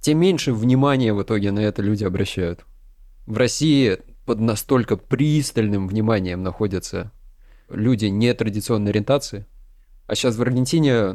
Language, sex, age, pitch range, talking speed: Russian, male, 20-39, 105-135 Hz, 125 wpm